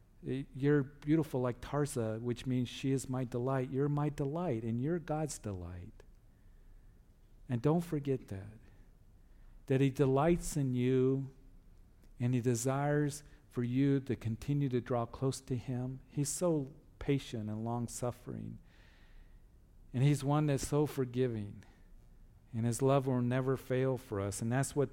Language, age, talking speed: English, 50-69, 145 wpm